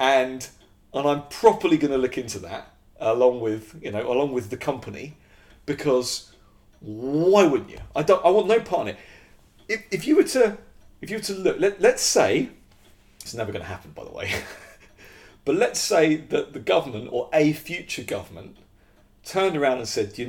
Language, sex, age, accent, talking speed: English, male, 40-59, British, 190 wpm